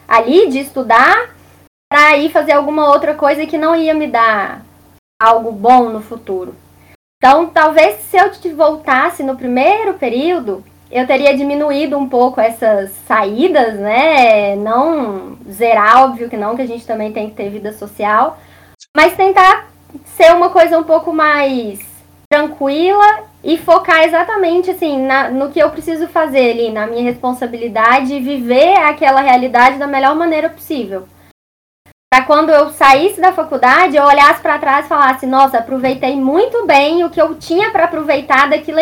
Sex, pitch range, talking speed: female, 240-320 Hz, 160 wpm